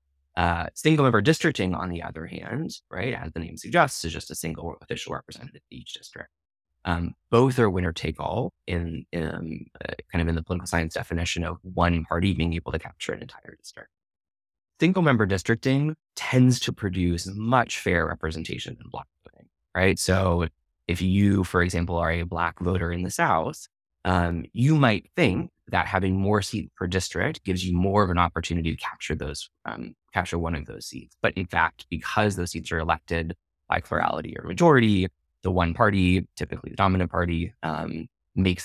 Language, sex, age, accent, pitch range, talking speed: English, male, 20-39, American, 80-95 Hz, 185 wpm